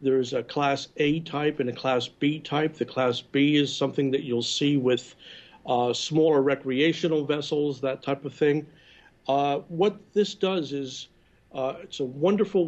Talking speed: 170 wpm